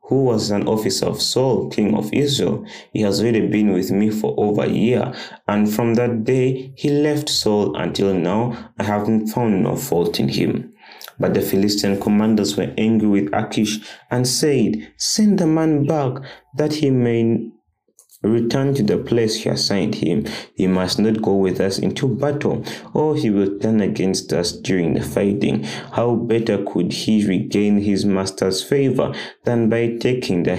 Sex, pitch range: male, 95-120 Hz